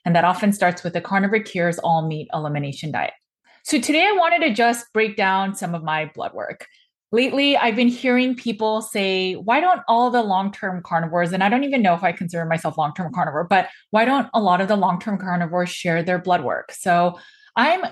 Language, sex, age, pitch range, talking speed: English, female, 20-39, 175-225 Hz, 210 wpm